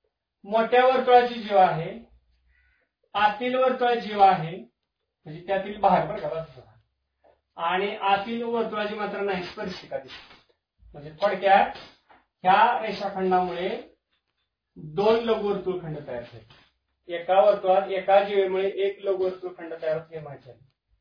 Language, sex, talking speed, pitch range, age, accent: Marathi, male, 110 wpm, 180-230 Hz, 40-59, native